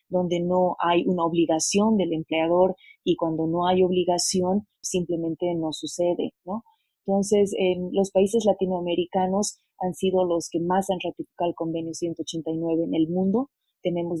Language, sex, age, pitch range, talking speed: English, female, 30-49, 170-195 Hz, 145 wpm